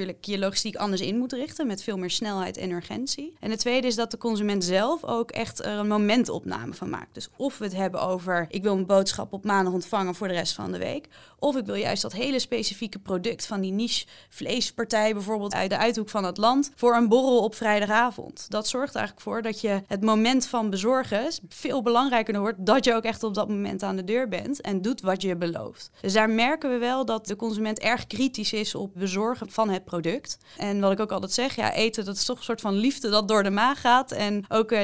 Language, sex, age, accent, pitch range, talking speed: Dutch, female, 20-39, Dutch, 195-230 Hz, 240 wpm